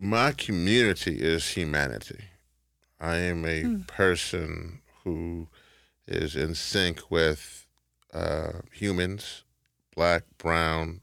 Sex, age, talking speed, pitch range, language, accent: male, 30-49, 90 wpm, 75-90 Hz, English, American